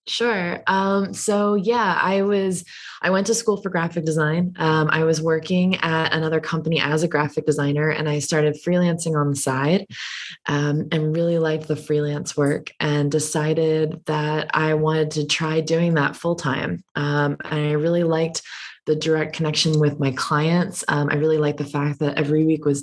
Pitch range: 145-160 Hz